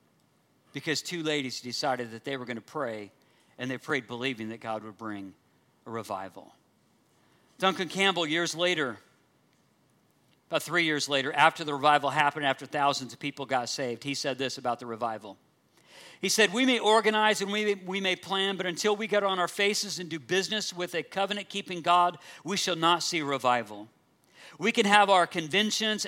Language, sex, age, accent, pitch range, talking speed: English, male, 50-69, American, 140-195 Hz, 180 wpm